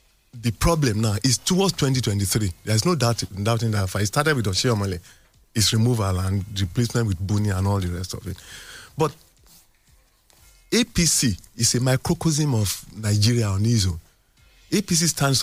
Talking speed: 155 wpm